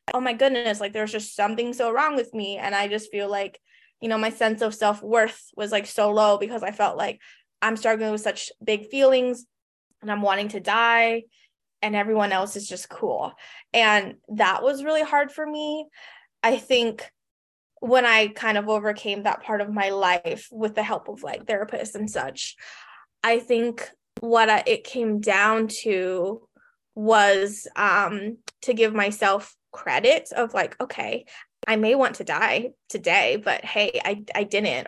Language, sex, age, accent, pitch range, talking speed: English, female, 20-39, American, 210-245 Hz, 175 wpm